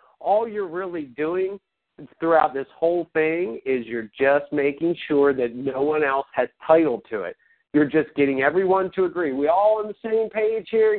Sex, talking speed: male, 185 wpm